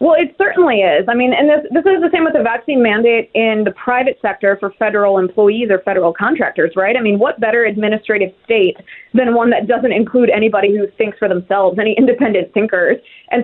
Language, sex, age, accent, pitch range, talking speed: English, female, 20-39, American, 205-270 Hz, 210 wpm